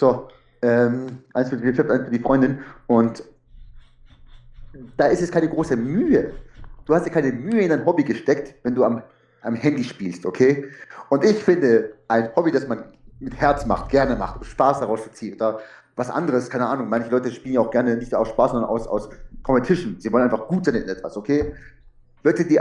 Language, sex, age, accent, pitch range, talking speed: German, male, 30-49, German, 115-145 Hz, 200 wpm